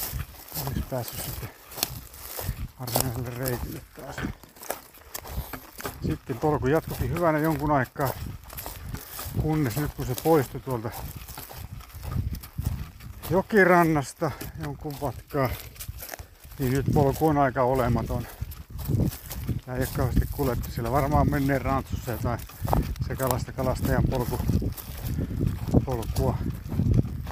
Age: 60-79